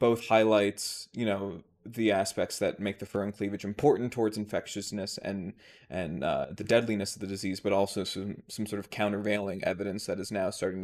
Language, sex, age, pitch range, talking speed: English, male, 20-39, 100-110 Hz, 195 wpm